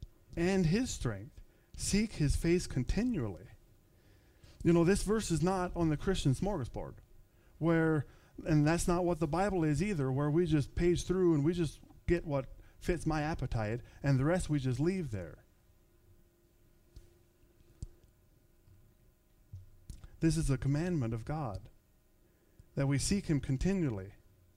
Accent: American